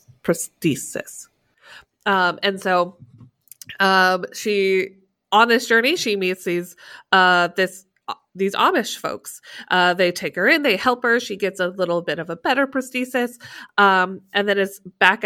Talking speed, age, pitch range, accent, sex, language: 155 wpm, 20-39, 175-205 Hz, American, female, English